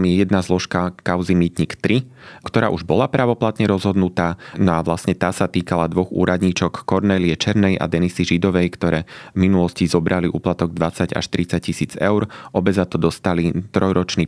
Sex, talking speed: male, 160 wpm